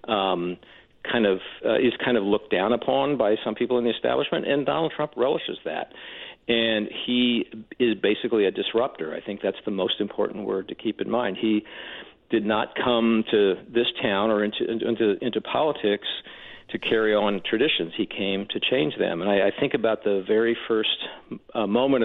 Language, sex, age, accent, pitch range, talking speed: English, male, 50-69, American, 105-120 Hz, 190 wpm